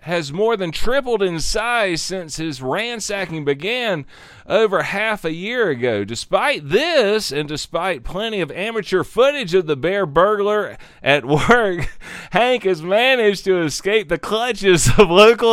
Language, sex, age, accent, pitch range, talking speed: English, male, 40-59, American, 155-210 Hz, 145 wpm